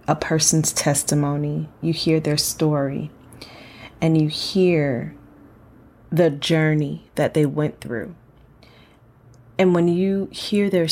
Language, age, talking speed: English, 30-49, 115 wpm